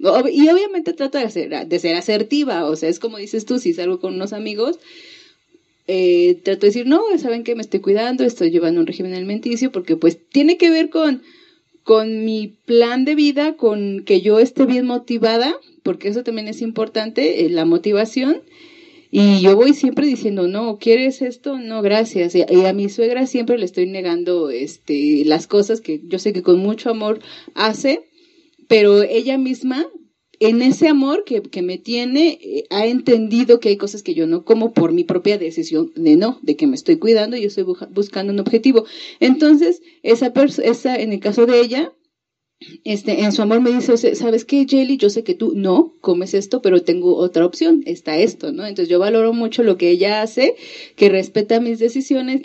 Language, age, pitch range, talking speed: Spanish, 30-49, 200-280 Hz, 195 wpm